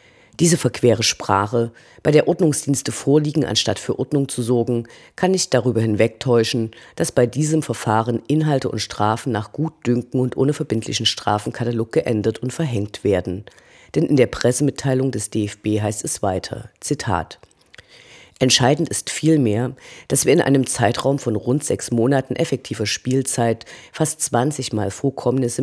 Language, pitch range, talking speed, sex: German, 115-140 Hz, 145 wpm, female